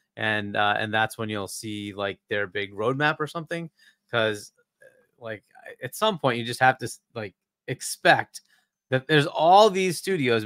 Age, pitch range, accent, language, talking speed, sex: 30-49, 115-150 Hz, American, English, 165 wpm, male